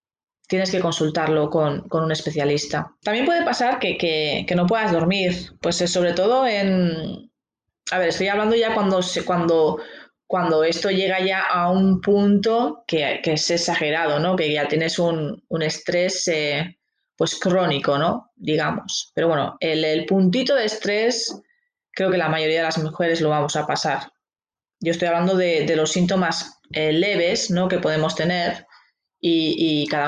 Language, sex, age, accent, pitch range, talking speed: Spanish, female, 20-39, Spanish, 160-190 Hz, 170 wpm